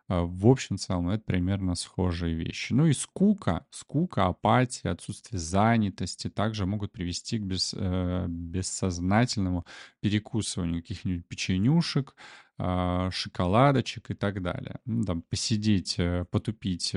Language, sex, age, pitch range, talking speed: Russian, male, 20-39, 90-115 Hz, 115 wpm